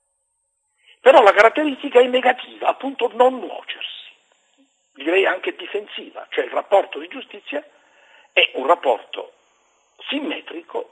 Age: 60-79